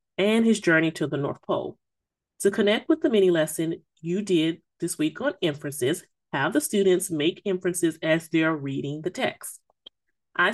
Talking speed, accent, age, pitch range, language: 170 wpm, American, 30-49, 160-210 Hz, English